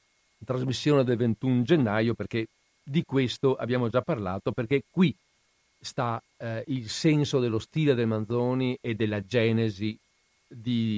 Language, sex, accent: Italian, male, native